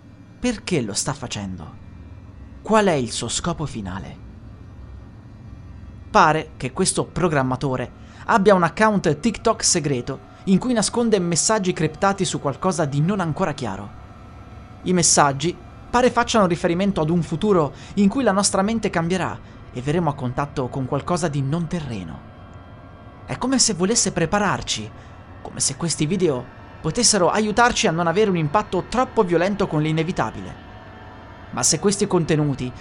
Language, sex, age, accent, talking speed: Italian, male, 30-49, native, 140 wpm